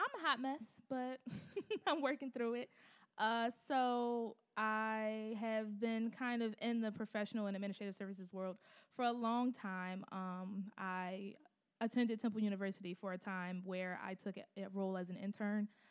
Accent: American